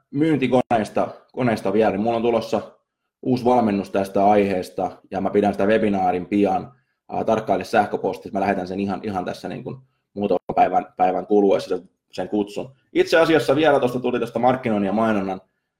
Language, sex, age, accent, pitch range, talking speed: Finnish, male, 20-39, native, 100-125 Hz, 160 wpm